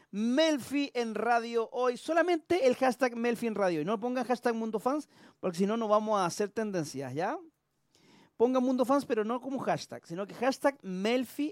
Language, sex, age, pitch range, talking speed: Spanish, male, 40-59, 160-240 Hz, 190 wpm